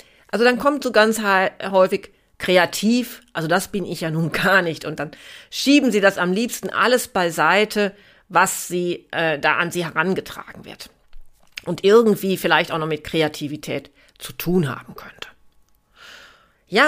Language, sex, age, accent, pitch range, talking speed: German, female, 40-59, German, 165-210 Hz, 155 wpm